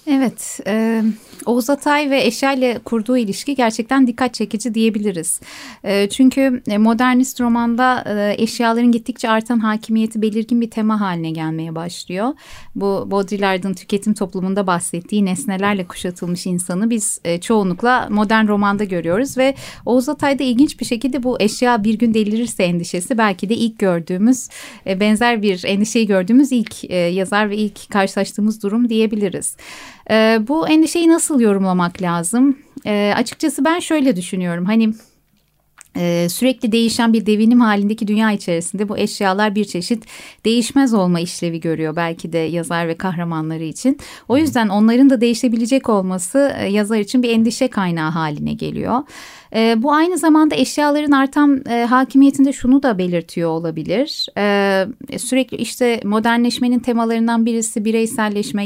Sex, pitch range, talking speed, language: female, 200-250 Hz, 125 wpm, Turkish